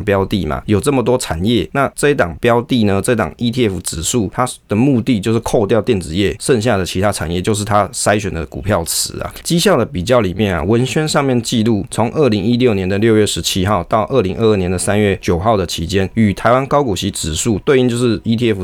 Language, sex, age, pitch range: Chinese, male, 20-39, 95-120 Hz